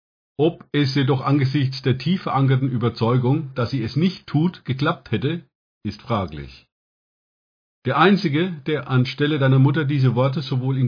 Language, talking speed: German, 150 wpm